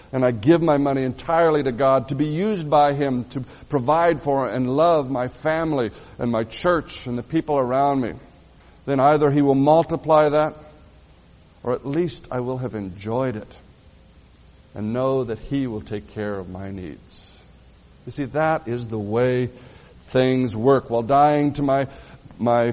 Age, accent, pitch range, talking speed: 60-79, American, 120-155 Hz, 170 wpm